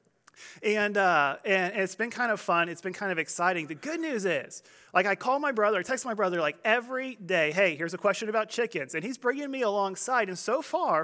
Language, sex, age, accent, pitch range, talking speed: English, male, 30-49, American, 170-240 Hz, 235 wpm